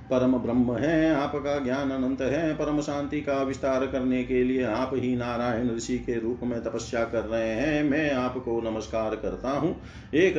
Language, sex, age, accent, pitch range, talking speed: Hindi, male, 40-59, native, 115-135 Hz, 180 wpm